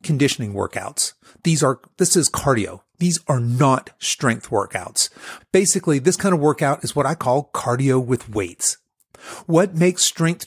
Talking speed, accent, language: 155 wpm, American, English